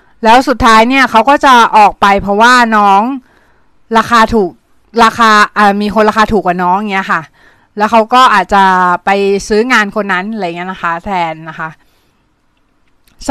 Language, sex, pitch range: Thai, female, 210-265 Hz